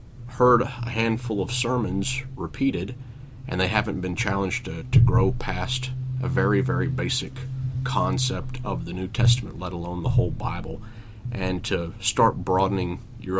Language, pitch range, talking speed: English, 95-120 Hz, 150 wpm